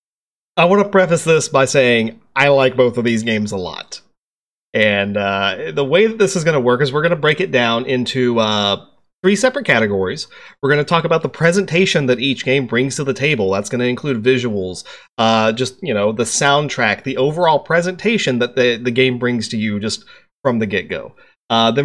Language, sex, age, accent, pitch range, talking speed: English, male, 30-49, American, 115-145 Hz, 215 wpm